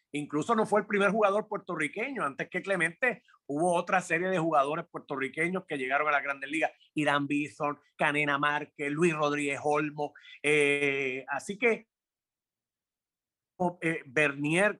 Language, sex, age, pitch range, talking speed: English, male, 30-49, 145-195 Hz, 135 wpm